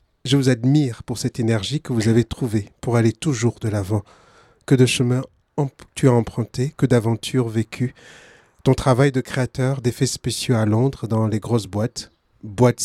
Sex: male